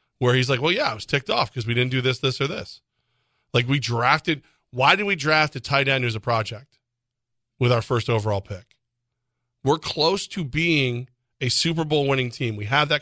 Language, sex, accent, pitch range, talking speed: English, male, American, 120-160 Hz, 215 wpm